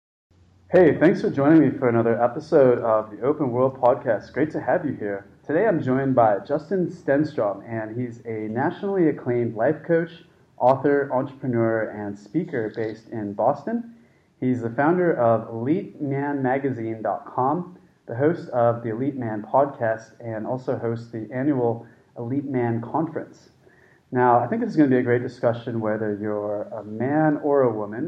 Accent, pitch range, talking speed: American, 115-135 Hz, 160 wpm